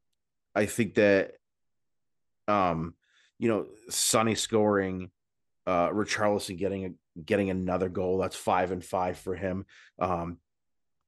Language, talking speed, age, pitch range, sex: English, 120 wpm, 30-49, 90-120 Hz, male